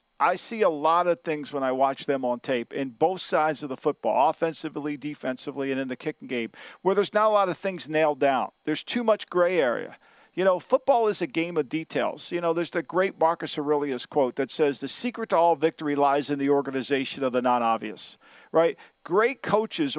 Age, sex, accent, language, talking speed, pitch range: 50-69, male, American, English, 215 wpm, 150-210 Hz